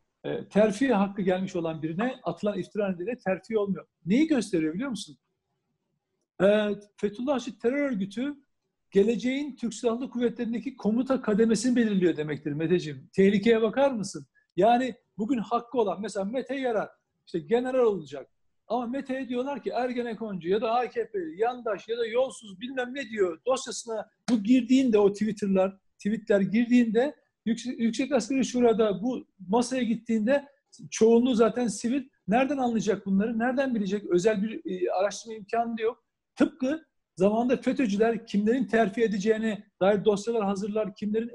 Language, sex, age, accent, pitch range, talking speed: Turkish, male, 60-79, native, 205-250 Hz, 135 wpm